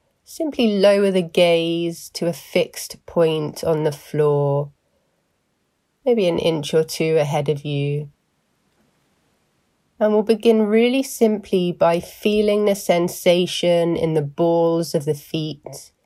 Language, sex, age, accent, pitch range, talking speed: English, female, 30-49, British, 145-175 Hz, 125 wpm